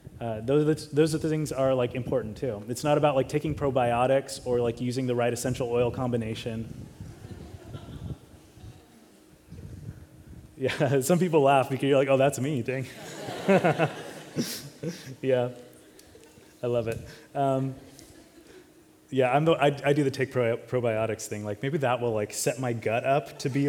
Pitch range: 110-140 Hz